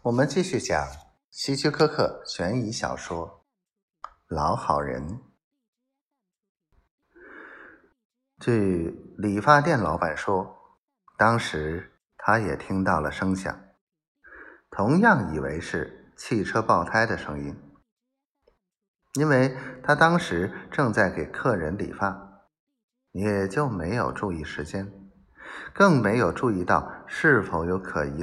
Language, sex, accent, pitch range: Chinese, male, native, 85-140 Hz